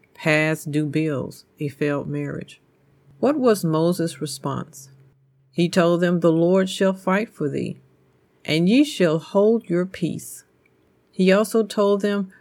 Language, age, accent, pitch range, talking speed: English, 50-69, American, 150-190 Hz, 140 wpm